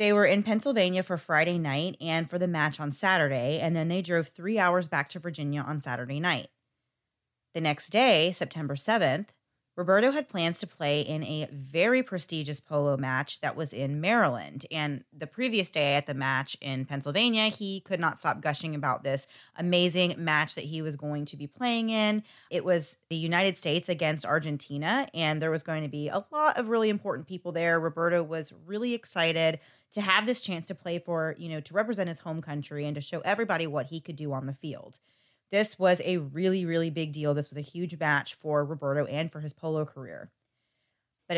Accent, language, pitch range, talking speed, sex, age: American, English, 145-185 Hz, 205 wpm, female, 20-39